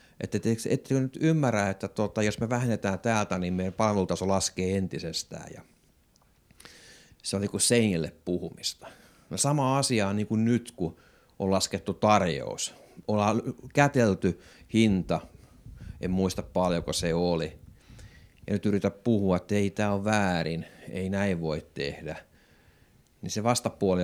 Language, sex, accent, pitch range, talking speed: Finnish, male, native, 90-115 Hz, 130 wpm